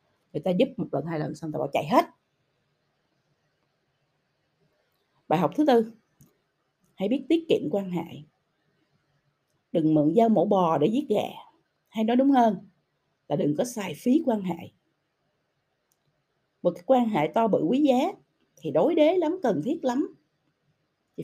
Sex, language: female, Vietnamese